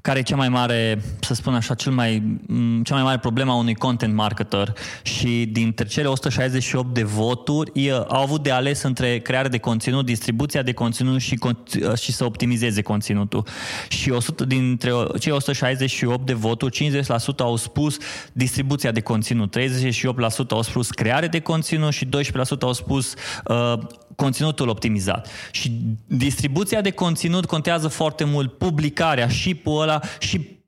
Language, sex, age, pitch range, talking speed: Romanian, male, 20-39, 120-155 Hz, 155 wpm